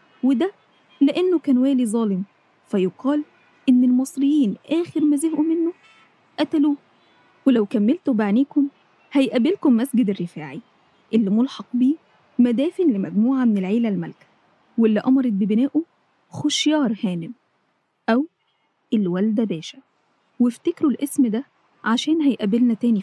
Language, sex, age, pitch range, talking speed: Arabic, female, 20-39, 215-280 Hz, 105 wpm